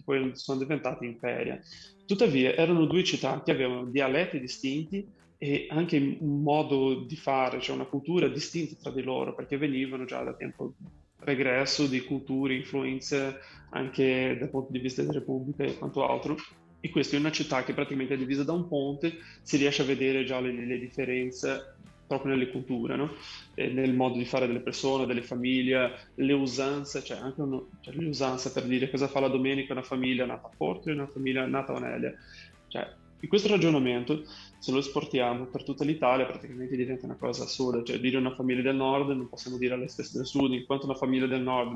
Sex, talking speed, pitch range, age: male, 195 wpm, 125-140 Hz, 20-39